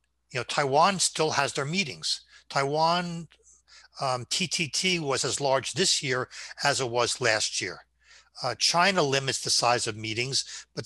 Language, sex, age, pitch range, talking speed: English, male, 60-79, 110-160 Hz, 155 wpm